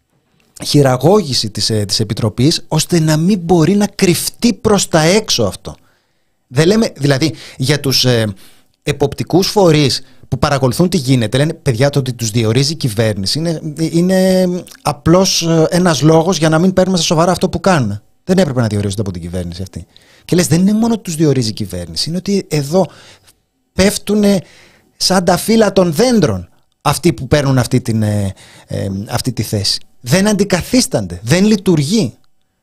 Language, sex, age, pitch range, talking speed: Greek, male, 30-49, 115-175 Hz, 165 wpm